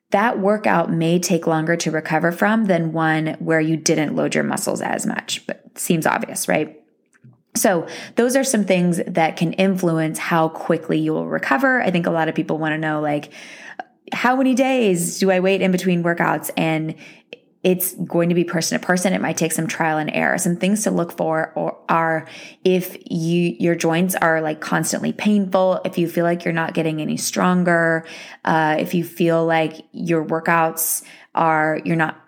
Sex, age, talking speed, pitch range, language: female, 20-39, 190 wpm, 160-190 Hz, English